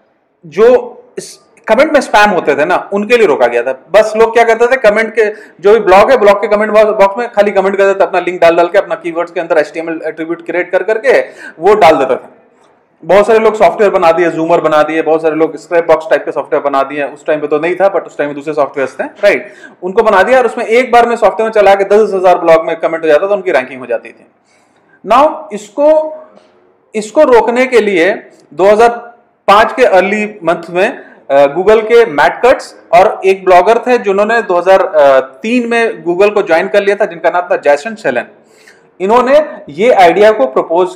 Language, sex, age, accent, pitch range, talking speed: Hindi, male, 30-49, native, 170-225 Hz, 165 wpm